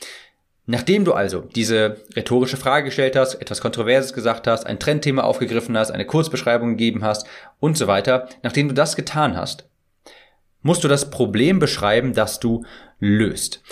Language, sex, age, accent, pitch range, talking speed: German, male, 30-49, German, 110-135 Hz, 160 wpm